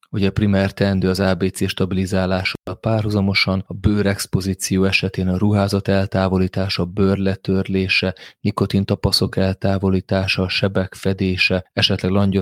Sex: male